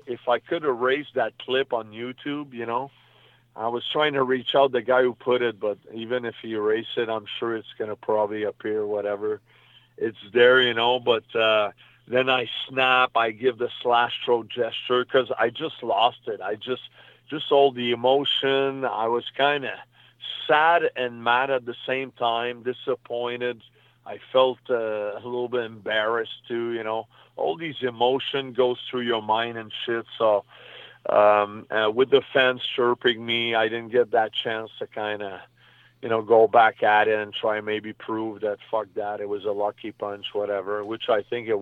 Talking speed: 190 wpm